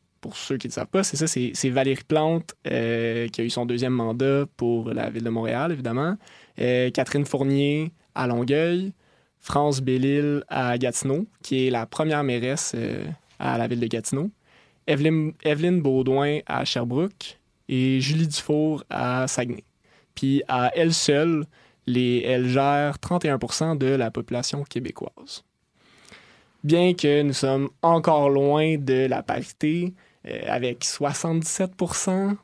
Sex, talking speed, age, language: male, 145 wpm, 20-39, French